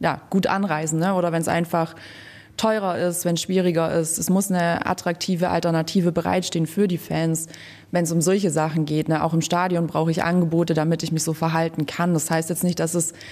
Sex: female